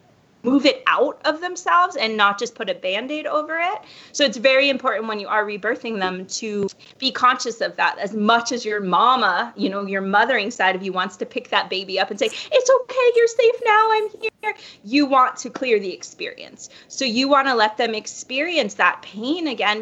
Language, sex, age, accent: English, female, 20-39, American